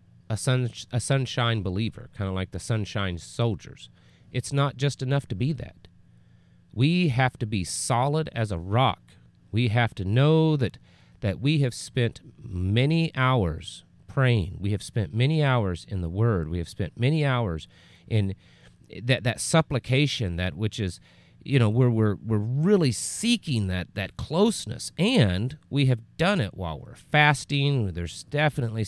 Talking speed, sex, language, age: 165 wpm, male, English, 40-59